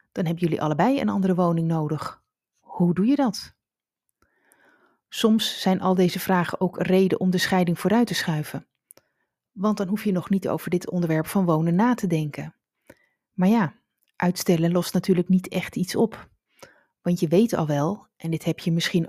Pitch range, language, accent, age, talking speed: 165-200 Hz, Dutch, Dutch, 30-49, 180 wpm